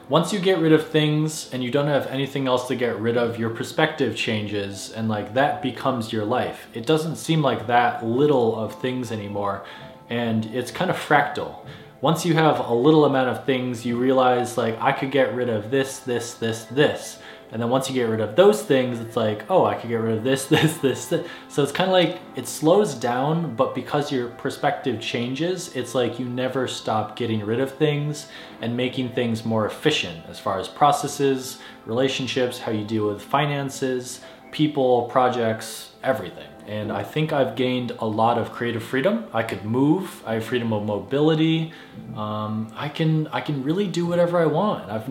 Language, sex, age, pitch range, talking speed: English, male, 20-39, 115-145 Hz, 195 wpm